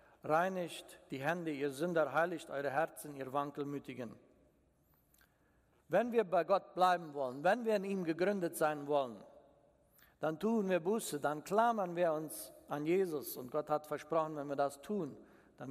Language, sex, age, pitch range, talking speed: German, male, 60-79, 145-195 Hz, 160 wpm